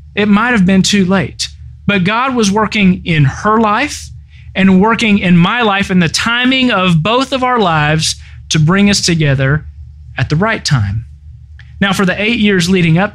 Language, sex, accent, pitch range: English, male, American, 160-215 Hz